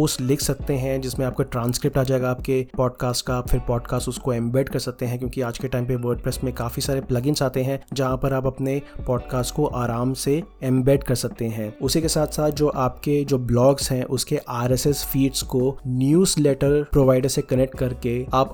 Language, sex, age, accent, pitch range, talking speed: Hindi, male, 20-39, native, 125-145 Hz, 205 wpm